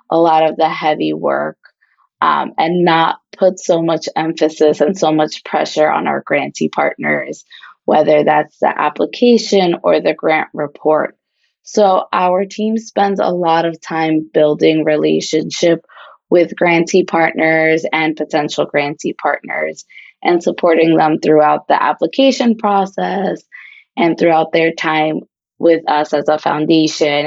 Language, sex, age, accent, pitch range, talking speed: English, female, 20-39, American, 150-175 Hz, 135 wpm